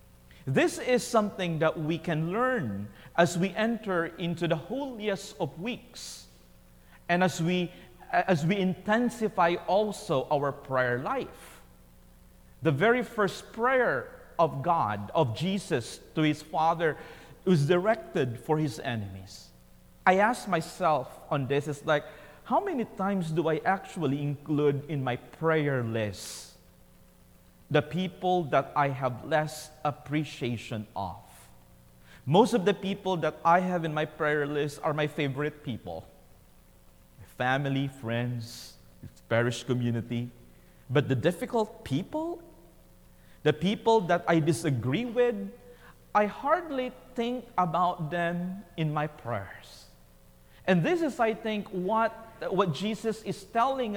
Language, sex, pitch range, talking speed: English, male, 125-195 Hz, 125 wpm